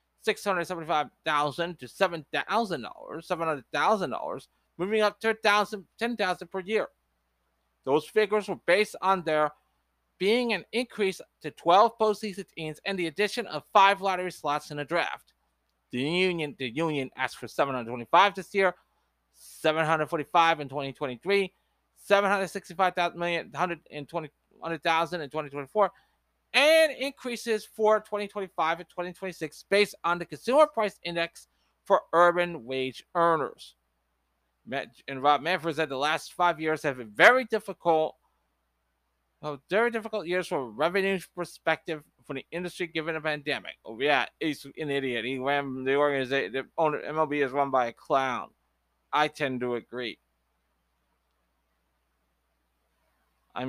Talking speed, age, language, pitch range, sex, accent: 135 wpm, 30-49, English, 130-190 Hz, male, American